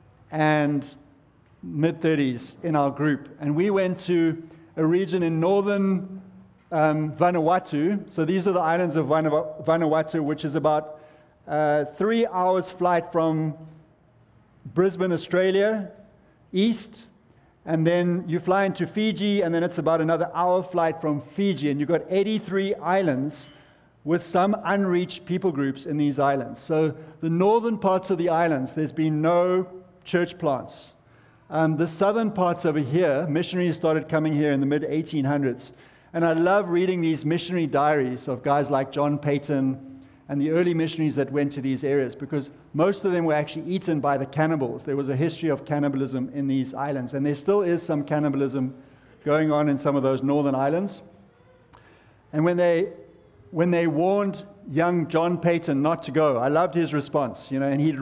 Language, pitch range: English, 145-175 Hz